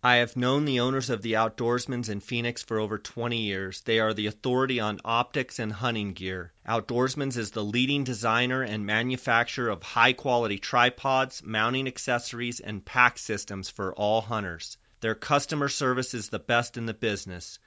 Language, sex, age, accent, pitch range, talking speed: English, male, 30-49, American, 110-130 Hz, 170 wpm